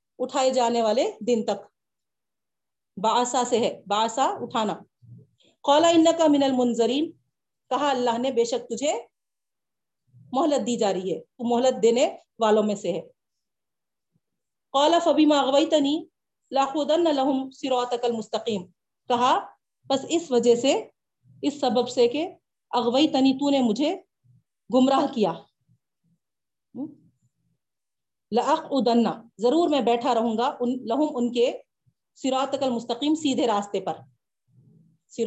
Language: Urdu